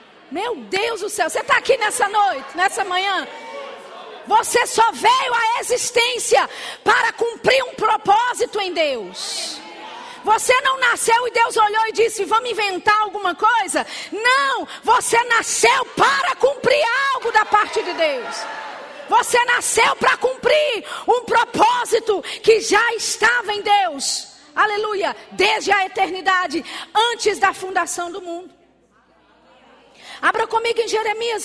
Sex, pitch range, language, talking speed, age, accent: female, 330-445 Hz, Portuguese, 130 wpm, 40-59, Brazilian